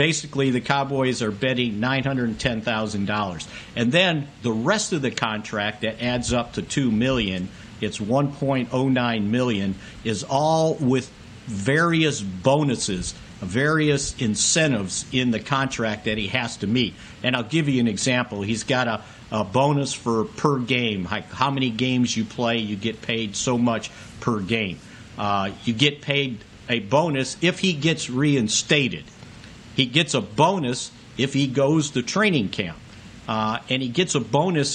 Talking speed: 155 wpm